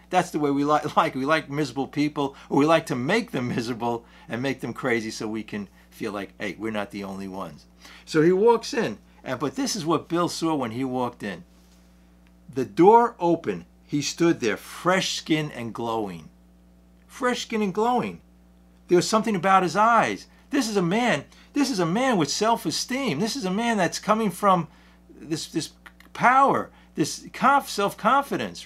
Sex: male